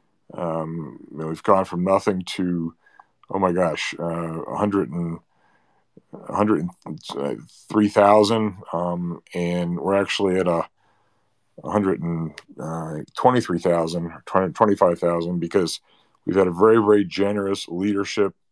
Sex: male